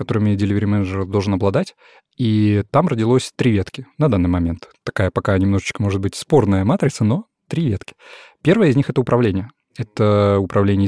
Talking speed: 170 wpm